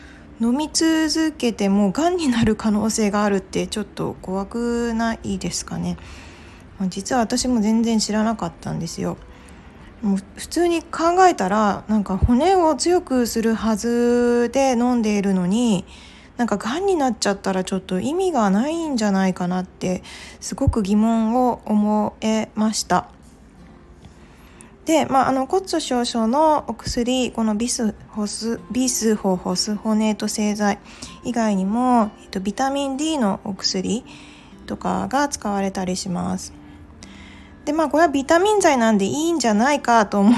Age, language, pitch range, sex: 20-39, Japanese, 205-275 Hz, female